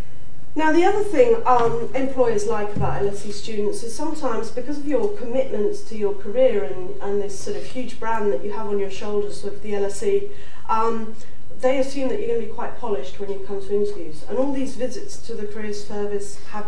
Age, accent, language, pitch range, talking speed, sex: 40-59, British, English, 205-275 Hz, 210 wpm, female